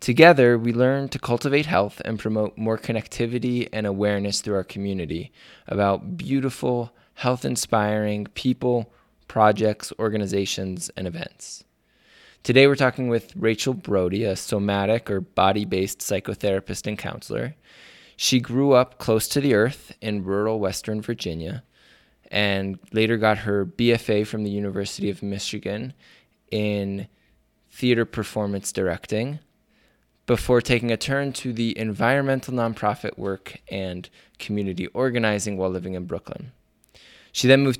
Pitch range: 100-125 Hz